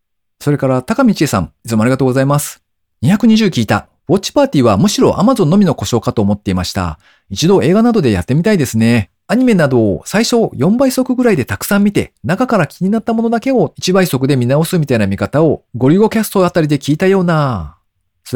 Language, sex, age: Japanese, male, 40-59